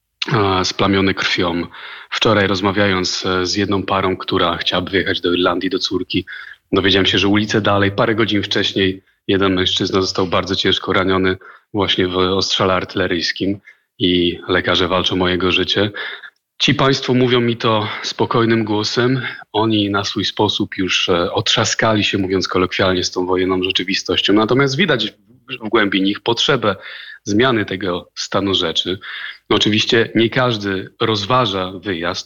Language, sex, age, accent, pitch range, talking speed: Polish, male, 30-49, native, 95-115 Hz, 135 wpm